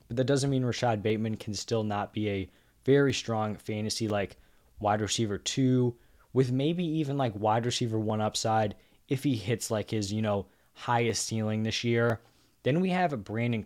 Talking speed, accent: 180 wpm, American